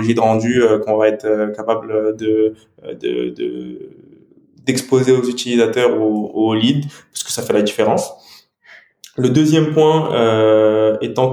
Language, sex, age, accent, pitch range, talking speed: French, male, 20-39, French, 110-130 Hz, 140 wpm